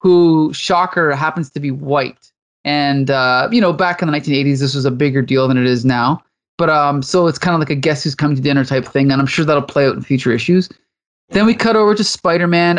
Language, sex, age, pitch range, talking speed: English, male, 20-39, 150-200 Hz, 250 wpm